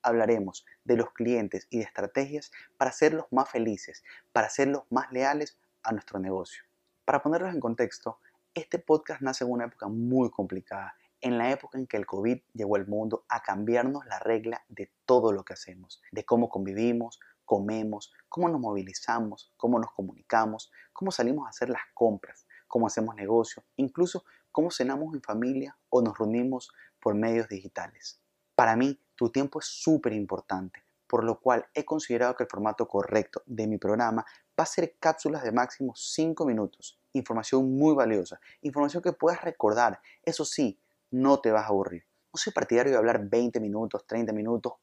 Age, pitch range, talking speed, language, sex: 30-49, 110-135 Hz, 175 wpm, Spanish, male